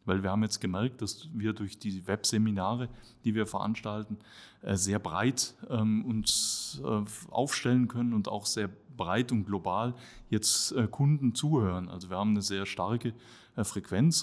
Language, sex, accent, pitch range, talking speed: German, male, German, 105-120 Hz, 145 wpm